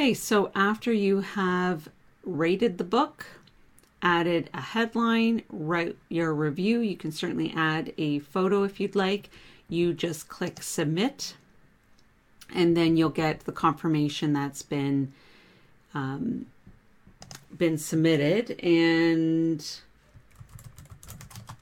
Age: 40-59